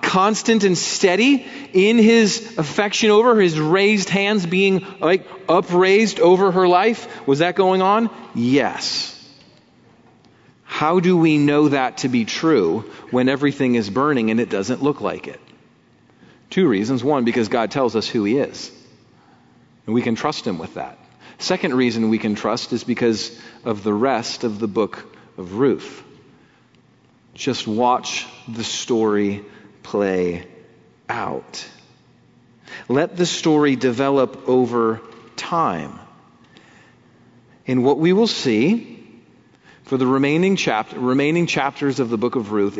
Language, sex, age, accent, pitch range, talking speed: English, male, 40-59, American, 120-190 Hz, 140 wpm